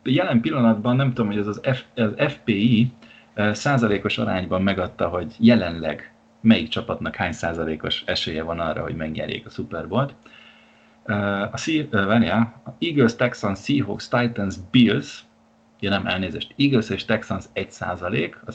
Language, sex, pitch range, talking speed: Hungarian, male, 105-120 Hz, 140 wpm